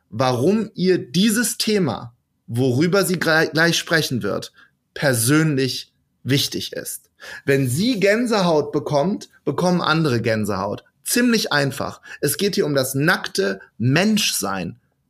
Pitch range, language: 145-215 Hz, German